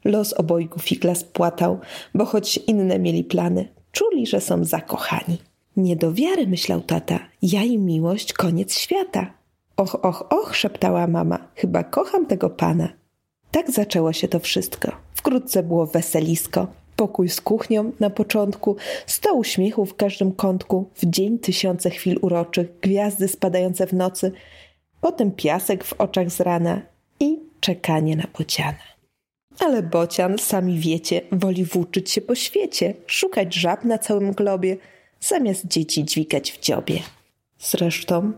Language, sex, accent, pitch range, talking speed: Polish, female, native, 170-220 Hz, 140 wpm